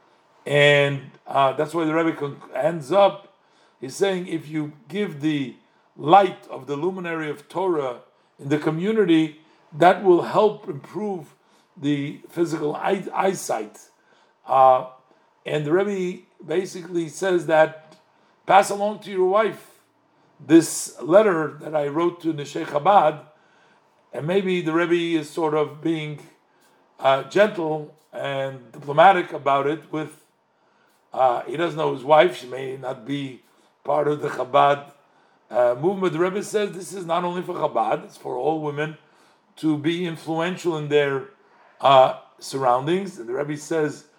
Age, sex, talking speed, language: 50-69, male, 145 wpm, English